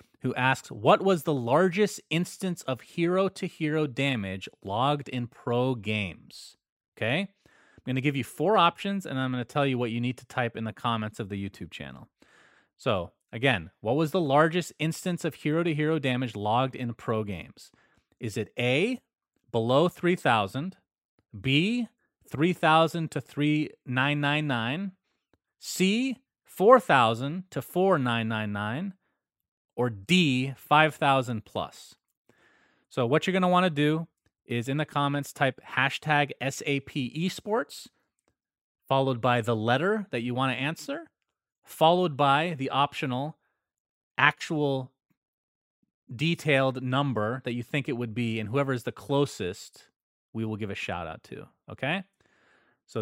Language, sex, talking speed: English, male, 150 wpm